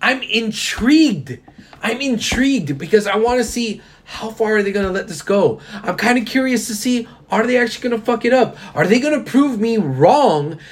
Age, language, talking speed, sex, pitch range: 30-49, English, 220 wpm, male, 150-245 Hz